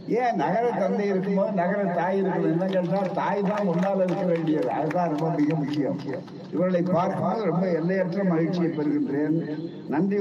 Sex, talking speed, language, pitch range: male, 120 wpm, Tamil, 145-175 Hz